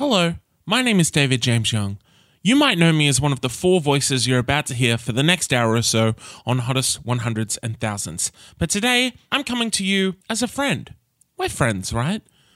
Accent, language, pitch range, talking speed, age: Australian, English, 125-175 Hz, 210 wpm, 20-39